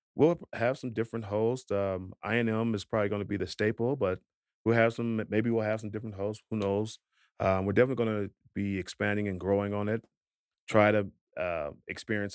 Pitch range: 100-120 Hz